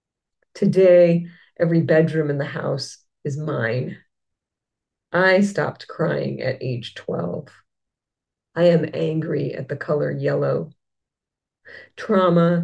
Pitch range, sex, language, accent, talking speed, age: 145-170 Hz, female, English, American, 105 wpm, 40-59